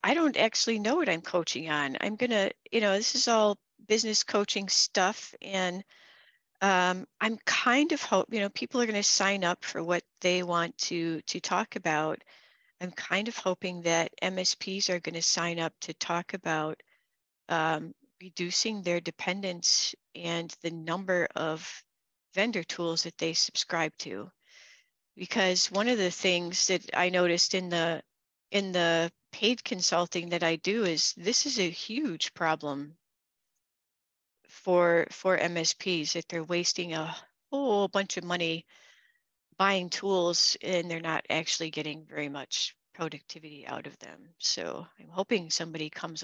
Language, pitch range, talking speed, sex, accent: English, 165-195 Hz, 155 wpm, female, American